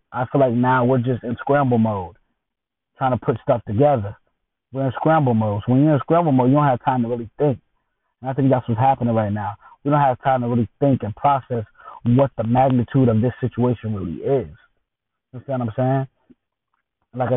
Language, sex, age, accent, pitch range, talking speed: English, male, 20-39, American, 115-145 Hz, 215 wpm